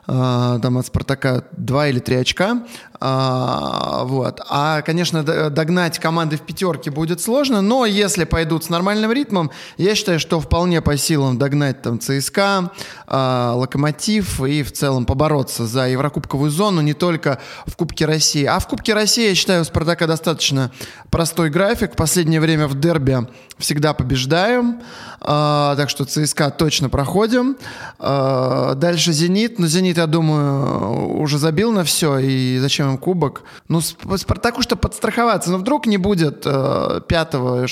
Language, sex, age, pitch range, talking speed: Russian, male, 20-39, 135-175 Hz, 150 wpm